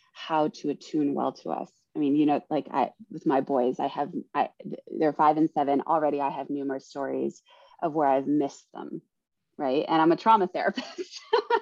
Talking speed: 195 wpm